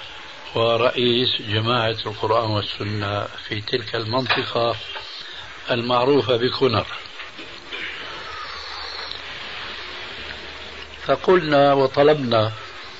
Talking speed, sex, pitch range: 50 wpm, male, 115-140 Hz